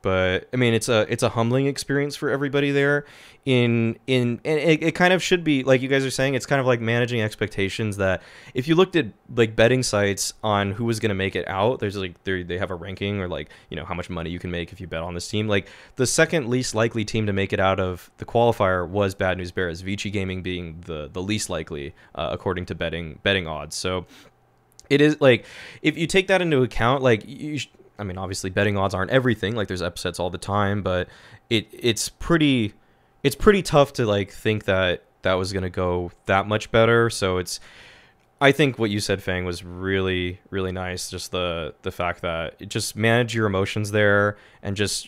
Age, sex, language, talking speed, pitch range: 20-39, male, English, 225 wpm, 95-125 Hz